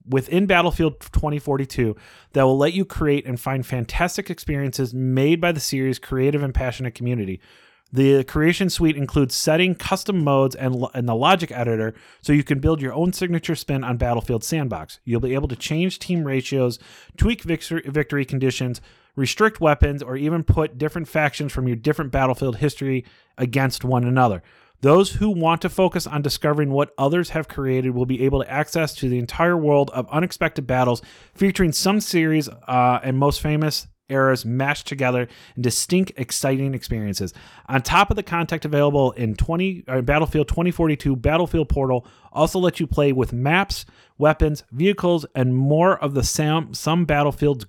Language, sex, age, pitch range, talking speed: English, male, 30-49, 125-160 Hz, 165 wpm